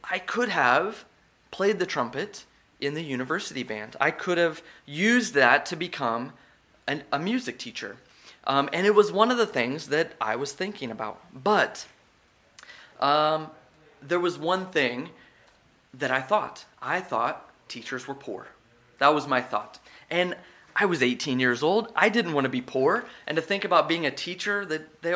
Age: 20-39